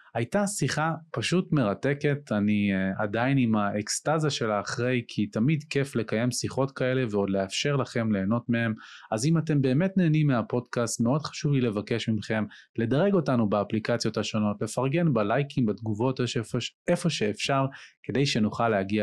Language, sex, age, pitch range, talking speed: Hebrew, male, 20-39, 110-140 Hz, 140 wpm